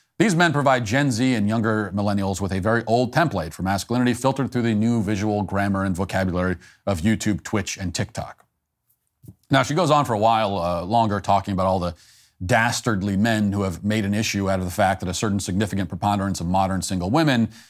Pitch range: 100-125 Hz